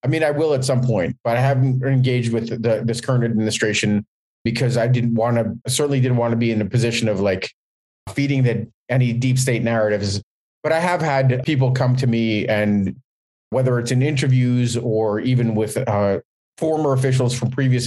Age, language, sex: 30-49, English, male